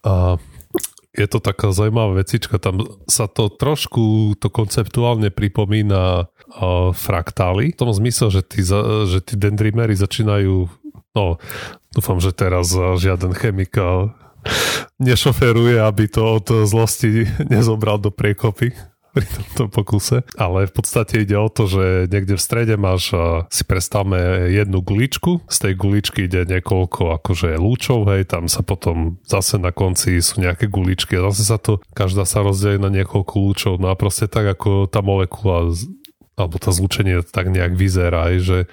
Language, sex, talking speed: Slovak, male, 145 wpm